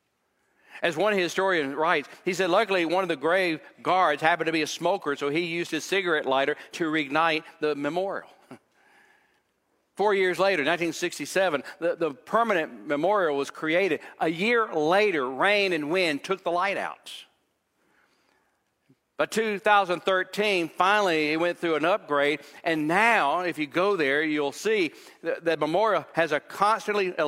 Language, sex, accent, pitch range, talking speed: English, male, American, 150-190 Hz, 150 wpm